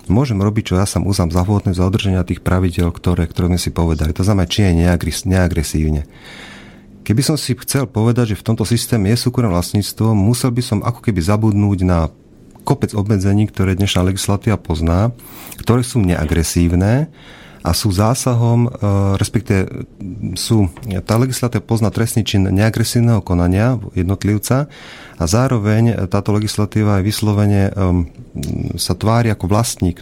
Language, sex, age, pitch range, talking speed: Slovak, male, 40-59, 90-110 Hz, 145 wpm